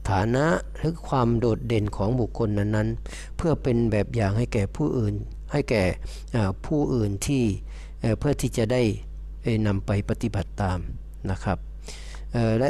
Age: 60-79